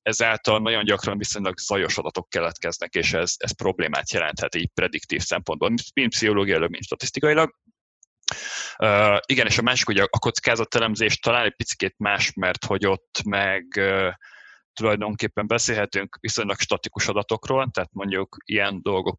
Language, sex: Hungarian, male